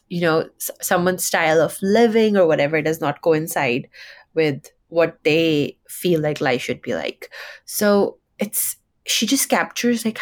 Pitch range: 160-190 Hz